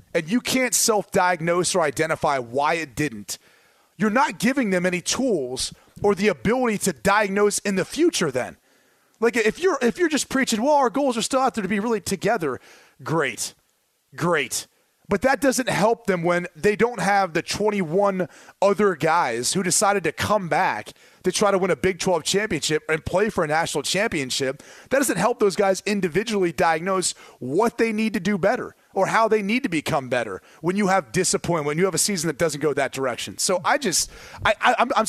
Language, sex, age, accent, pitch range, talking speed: English, male, 30-49, American, 170-220 Hz, 200 wpm